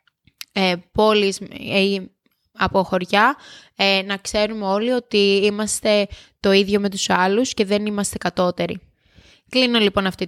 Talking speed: 125 wpm